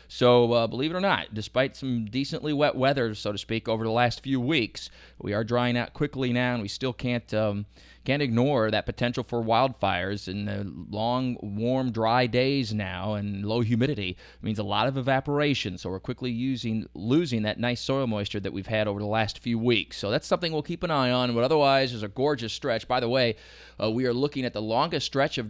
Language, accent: English, American